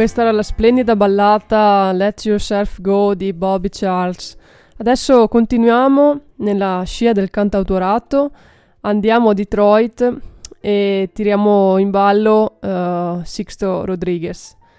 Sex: female